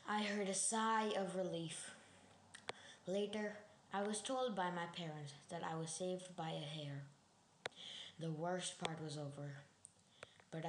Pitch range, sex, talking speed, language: 170-205 Hz, female, 145 wpm, English